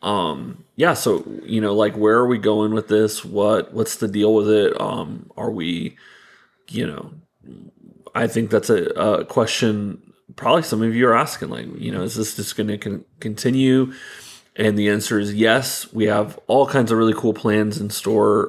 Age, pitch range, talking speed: 30-49, 105-115 Hz, 195 wpm